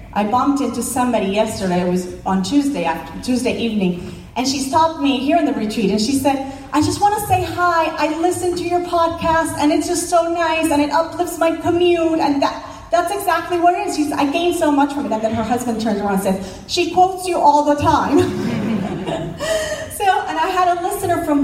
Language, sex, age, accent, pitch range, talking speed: English, female, 30-49, American, 215-315 Hz, 220 wpm